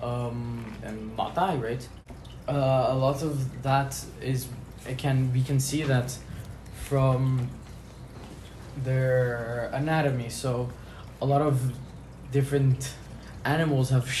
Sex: male